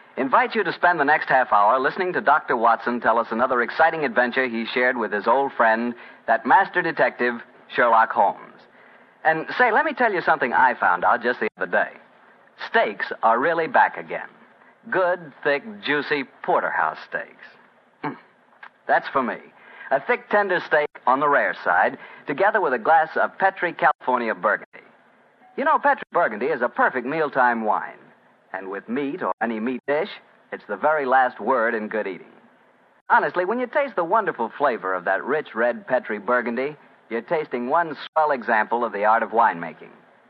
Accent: American